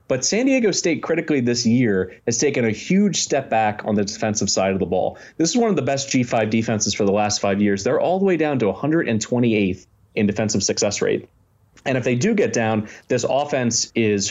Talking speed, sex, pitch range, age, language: 220 wpm, male, 105-125 Hz, 30-49, English